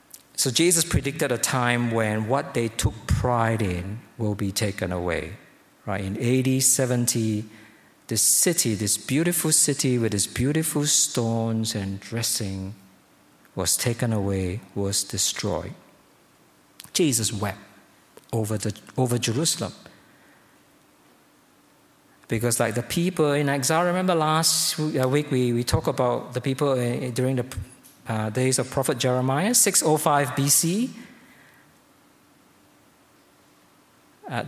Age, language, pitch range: 50-69, English, 110-140 Hz